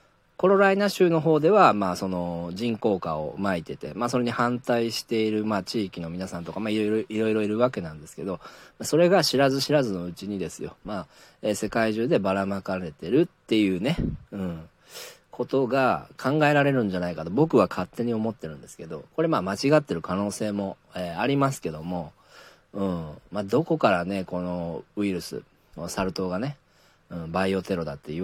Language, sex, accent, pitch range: Japanese, male, native, 90-145 Hz